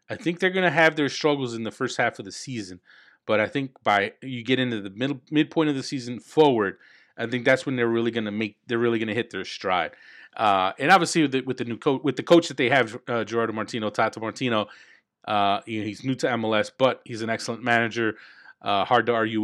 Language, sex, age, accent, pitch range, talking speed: English, male, 30-49, American, 100-130 Hz, 240 wpm